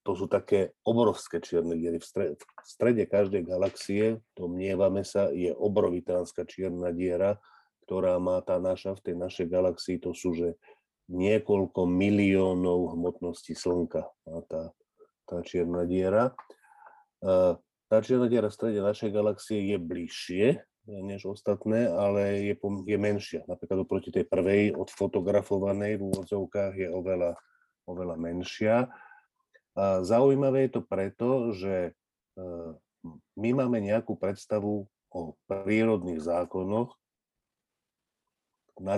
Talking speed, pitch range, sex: 120 wpm, 90-105 Hz, male